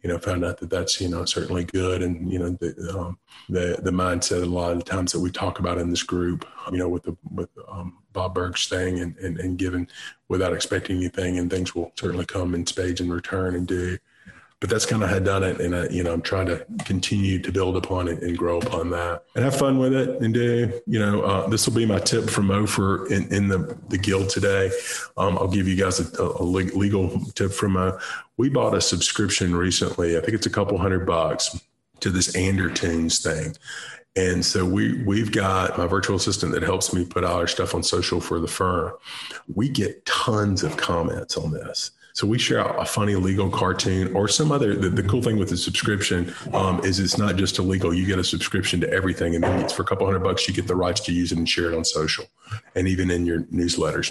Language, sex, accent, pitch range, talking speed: English, male, American, 90-100 Hz, 235 wpm